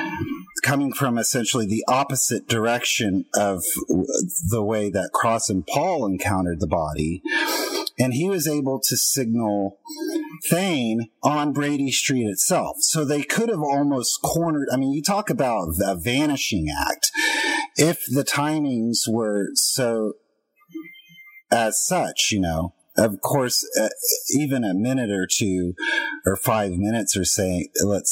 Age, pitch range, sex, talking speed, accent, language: 40-59, 100-150 Hz, male, 135 wpm, American, English